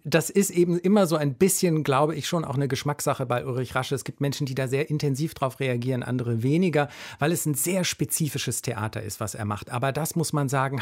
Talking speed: 235 wpm